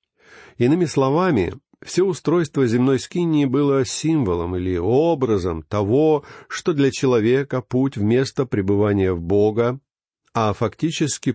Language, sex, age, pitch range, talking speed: Russian, male, 50-69, 105-140 Hz, 110 wpm